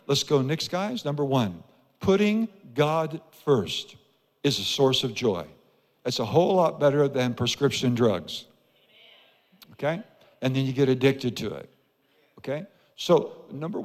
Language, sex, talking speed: English, male, 145 wpm